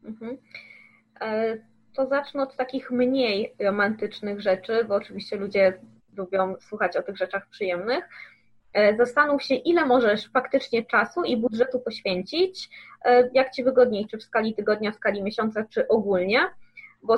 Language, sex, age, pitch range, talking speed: Polish, female, 20-39, 200-255 Hz, 135 wpm